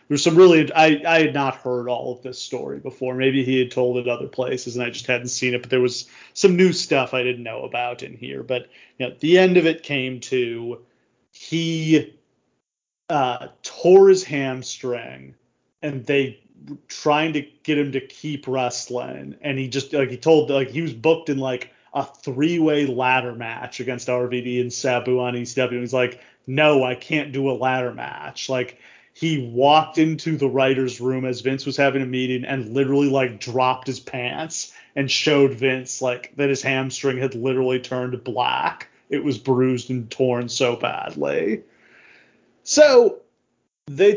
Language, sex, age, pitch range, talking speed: English, male, 30-49, 125-150 Hz, 185 wpm